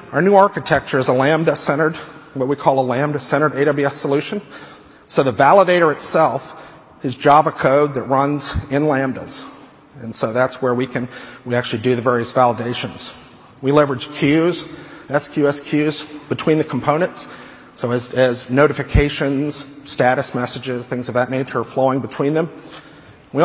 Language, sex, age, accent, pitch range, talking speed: English, male, 40-59, American, 125-155 Hz, 150 wpm